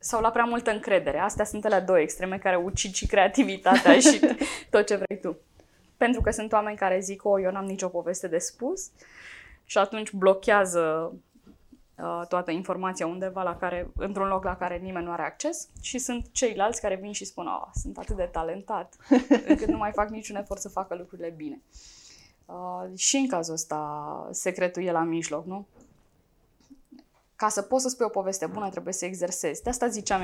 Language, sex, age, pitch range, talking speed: Romanian, female, 10-29, 185-230 Hz, 185 wpm